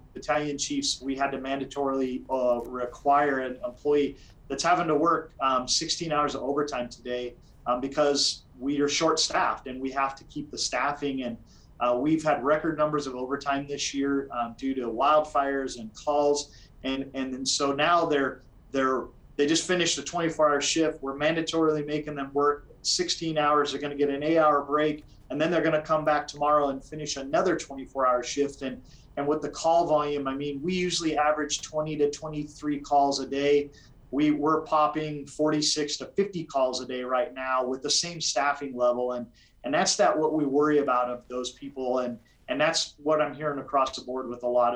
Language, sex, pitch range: English, male, 130-150 Hz